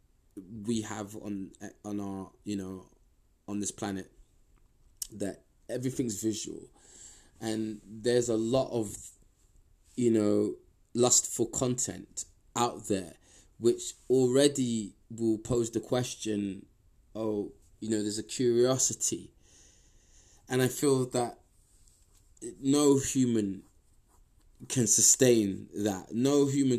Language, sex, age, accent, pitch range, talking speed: English, male, 20-39, British, 100-125 Hz, 105 wpm